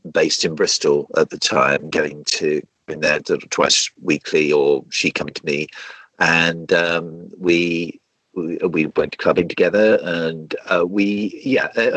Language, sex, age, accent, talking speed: English, male, 50-69, British, 145 wpm